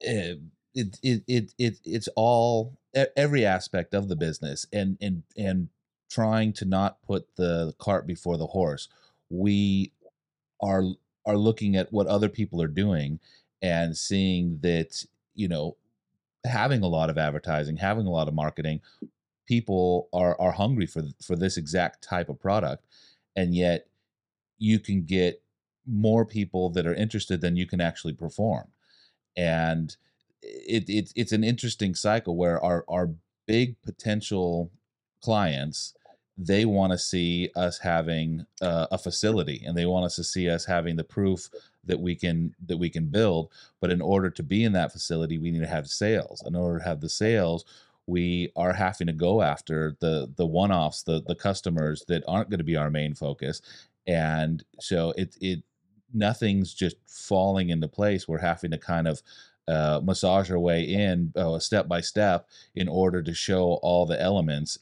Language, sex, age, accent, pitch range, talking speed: English, male, 30-49, American, 85-100 Hz, 165 wpm